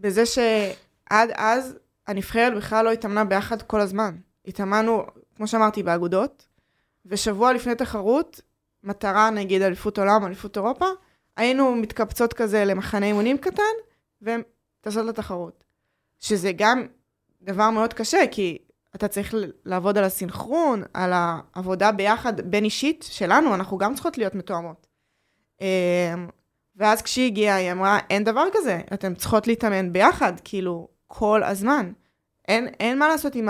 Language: English